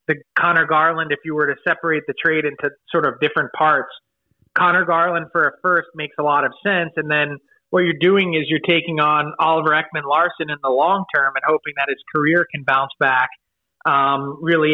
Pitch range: 150-175 Hz